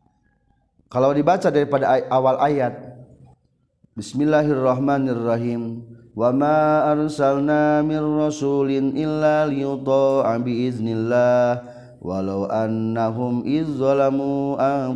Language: Indonesian